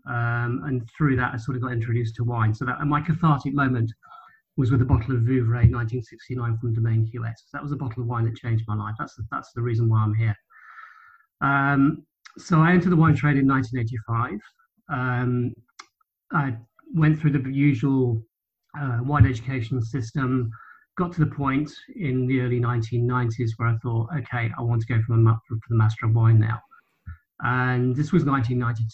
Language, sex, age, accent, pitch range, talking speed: English, male, 40-59, British, 120-145 Hz, 185 wpm